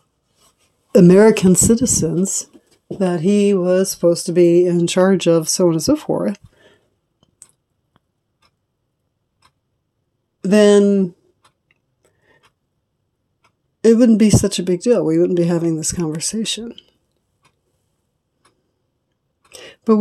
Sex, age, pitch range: female, 60-79, 175-225 Hz